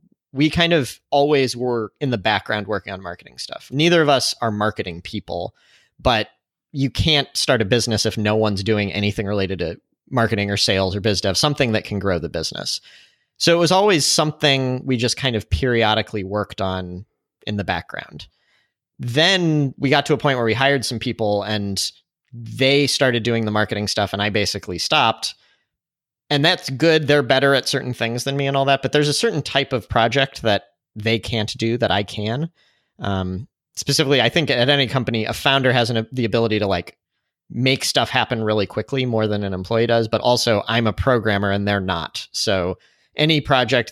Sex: male